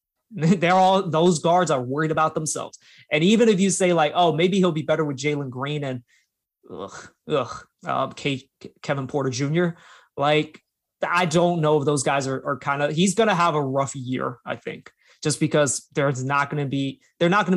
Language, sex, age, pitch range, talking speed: English, male, 20-39, 140-175 Hz, 190 wpm